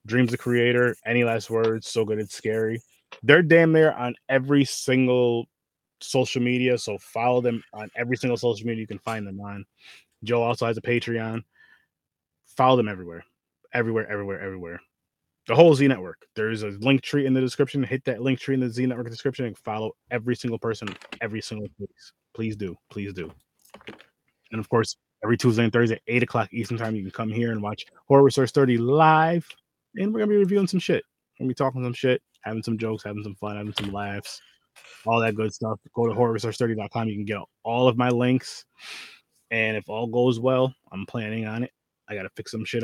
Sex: male